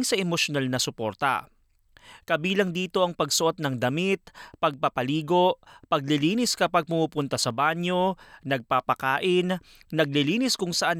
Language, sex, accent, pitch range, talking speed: Filipino, male, native, 150-185 Hz, 110 wpm